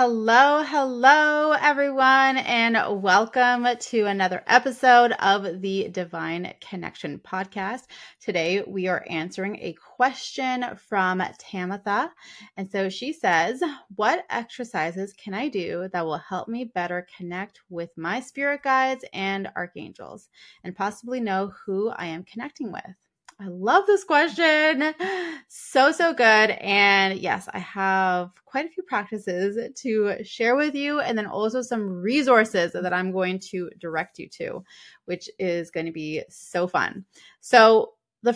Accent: American